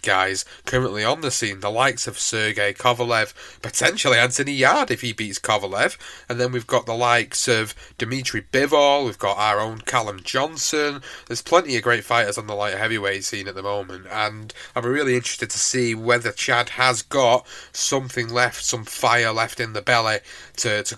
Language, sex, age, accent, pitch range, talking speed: English, male, 30-49, British, 105-125 Hz, 190 wpm